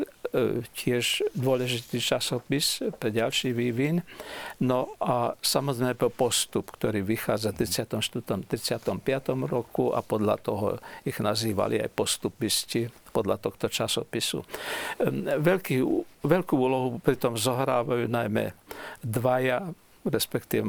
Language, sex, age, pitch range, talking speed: Slovak, male, 60-79, 120-165 Hz, 100 wpm